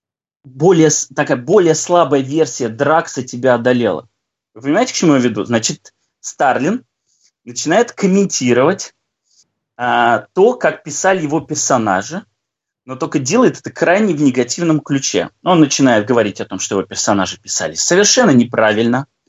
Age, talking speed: 20-39, 130 wpm